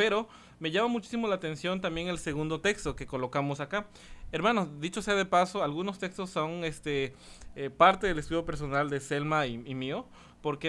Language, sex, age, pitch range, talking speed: Spanish, male, 20-39, 150-200 Hz, 185 wpm